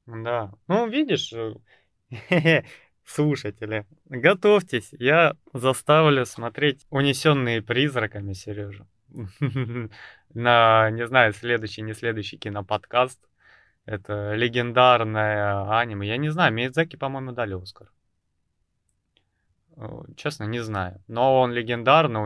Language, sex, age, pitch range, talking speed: Russian, male, 20-39, 100-120 Hz, 90 wpm